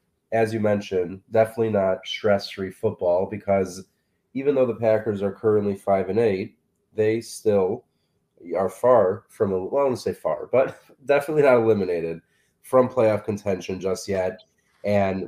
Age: 20-39